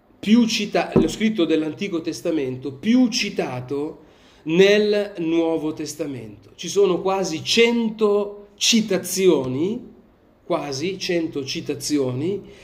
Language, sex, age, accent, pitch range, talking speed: Italian, male, 40-59, native, 150-210 Hz, 90 wpm